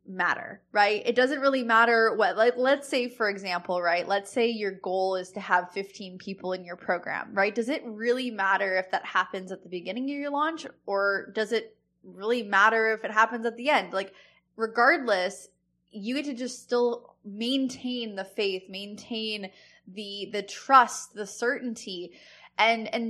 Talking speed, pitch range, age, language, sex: 175 wpm, 195-245 Hz, 10-29, English, female